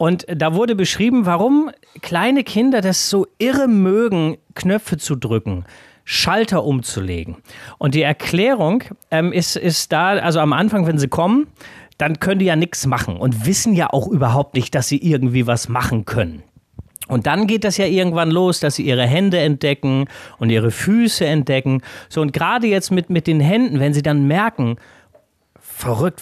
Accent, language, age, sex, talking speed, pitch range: German, German, 30-49, male, 175 wpm, 130-195 Hz